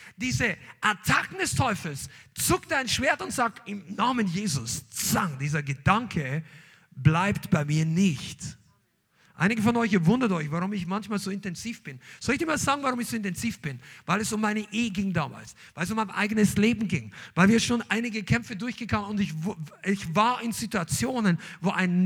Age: 50-69